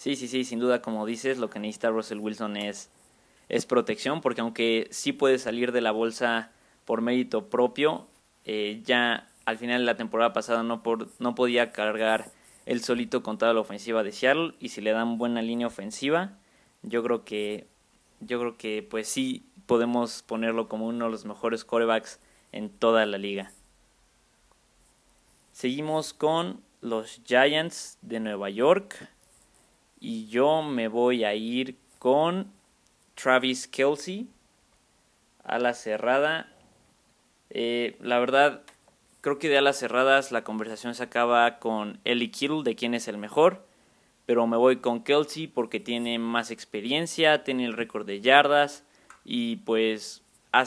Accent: Mexican